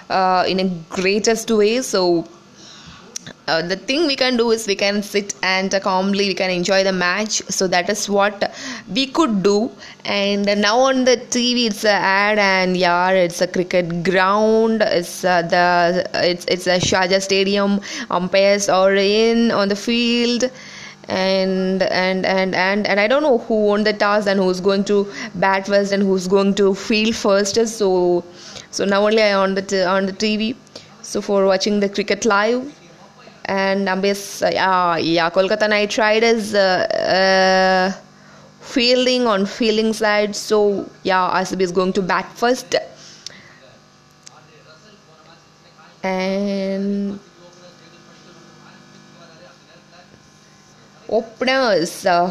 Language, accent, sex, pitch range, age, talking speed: Tamil, native, female, 185-215 Hz, 20-39, 145 wpm